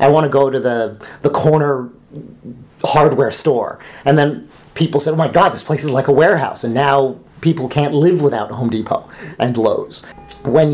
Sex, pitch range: male, 120-145 Hz